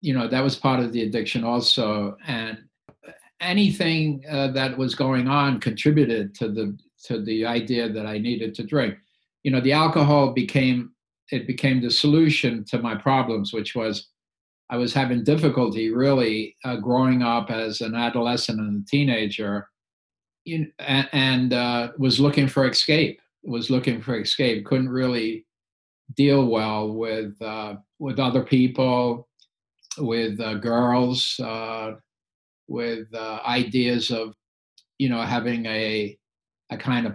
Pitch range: 110-130 Hz